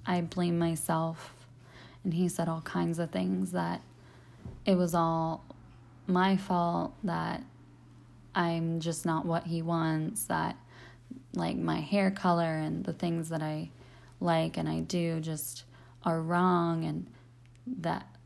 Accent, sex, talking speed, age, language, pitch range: American, female, 140 wpm, 20-39, English, 120-175 Hz